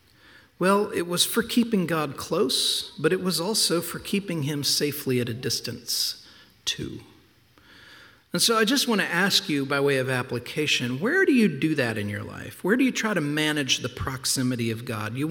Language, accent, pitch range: English, American, 120-170 Hz